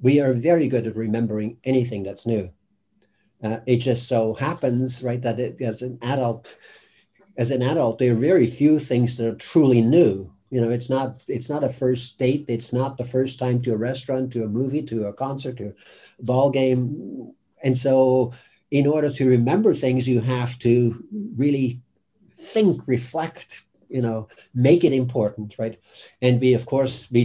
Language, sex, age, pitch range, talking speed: English, male, 50-69, 115-130 Hz, 185 wpm